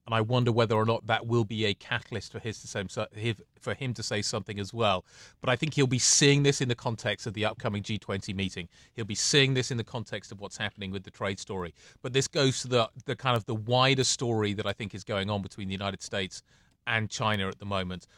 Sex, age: male, 30-49